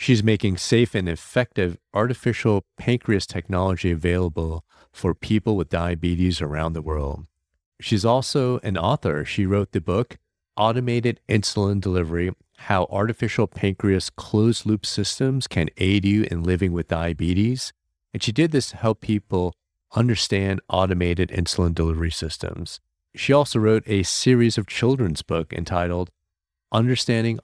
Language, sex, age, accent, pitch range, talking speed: English, male, 40-59, American, 85-110 Hz, 135 wpm